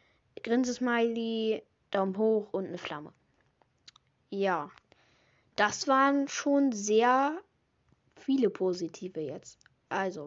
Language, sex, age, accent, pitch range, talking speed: German, female, 10-29, German, 185-230 Hz, 95 wpm